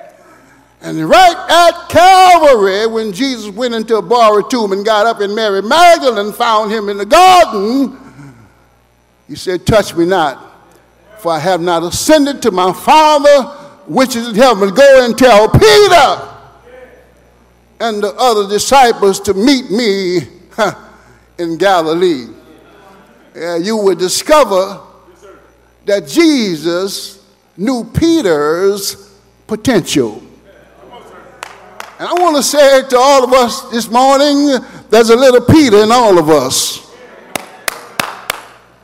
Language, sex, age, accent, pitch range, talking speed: English, male, 60-79, American, 180-280 Hz, 125 wpm